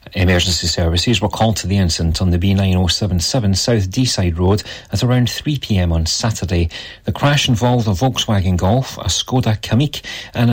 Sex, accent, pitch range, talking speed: male, British, 90-115 Hz, 160 wpm